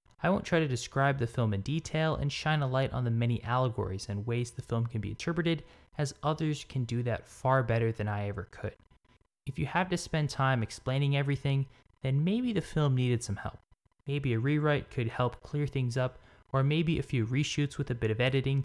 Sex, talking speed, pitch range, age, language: male, 220 wpm, 115-145 Hz, 10-29, English